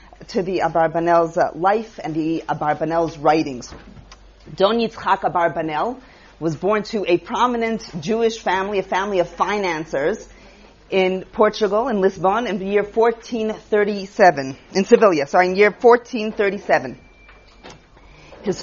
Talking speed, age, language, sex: 115 wpm, 40-59, English, female